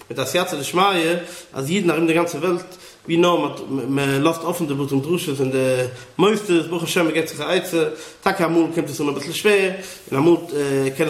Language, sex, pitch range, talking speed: English, male, 145-180 Hz, 170 wpm